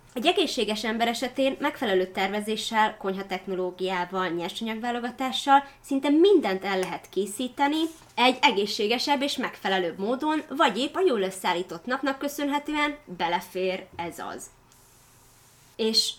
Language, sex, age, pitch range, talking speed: Hungarian, female, 20-39, 185-255 Hz, 105 wpm